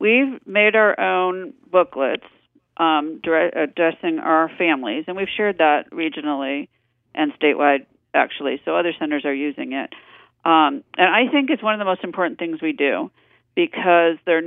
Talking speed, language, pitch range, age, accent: 160 wpm, English, 155-190 Hz, 50-69, American